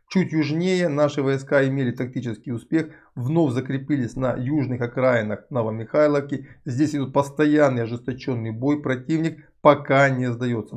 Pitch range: 120-150 Hz